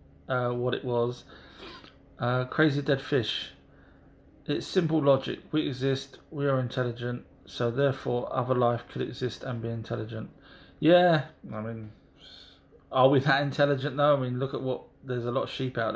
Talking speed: 165 wpm